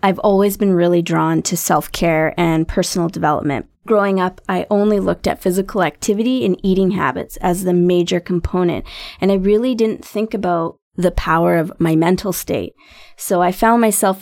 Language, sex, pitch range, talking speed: English, female, 170-205 Hz, 175 wpm